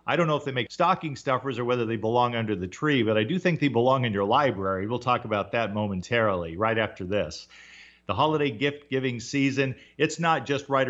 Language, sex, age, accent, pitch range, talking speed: English, male, 50-69, American, 105-155 Hz, 220 wpm